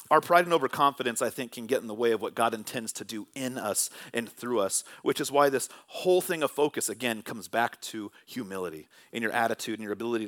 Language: English